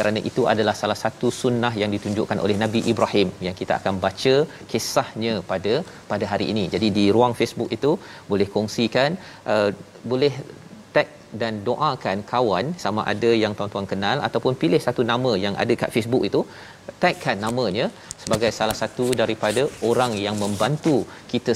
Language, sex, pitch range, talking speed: Malayalam, male, 105-125 Hz, 160 wpm